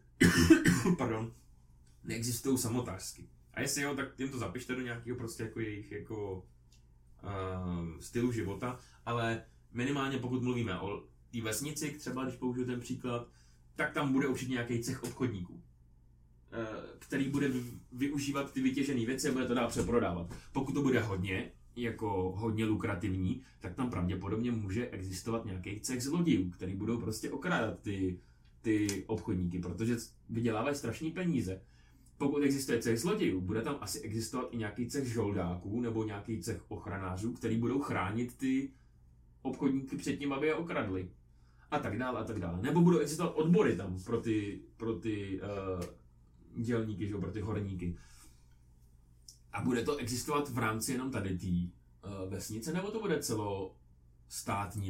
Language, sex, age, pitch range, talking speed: Czech, male, 30-49, 95-125 Hz, 150 wpm